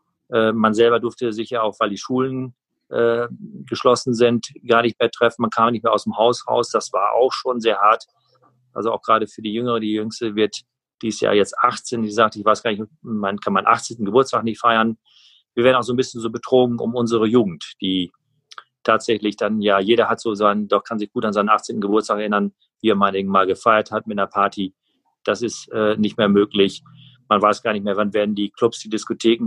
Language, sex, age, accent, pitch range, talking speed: German, male, 40-59, German, 105-120 Hz, 225 wpm